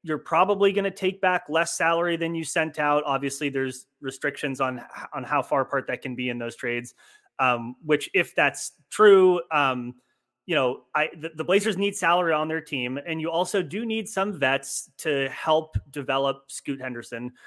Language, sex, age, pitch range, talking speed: English, male, 30-49, 125-165 Hz, 190 wpm